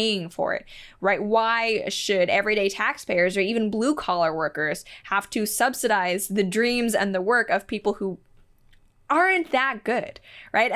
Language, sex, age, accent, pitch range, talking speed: English, female, 10-29, American, 185-225 Hz, 150 wpm